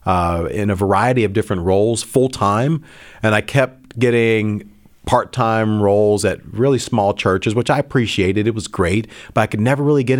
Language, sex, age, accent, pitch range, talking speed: English, male, 40-59, American, 100-120 Hz, 175 wpm